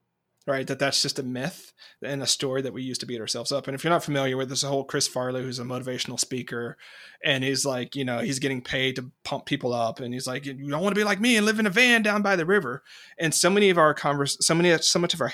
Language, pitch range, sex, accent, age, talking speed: English, 130-165 Hz, male, American, 30-49, 285 wpm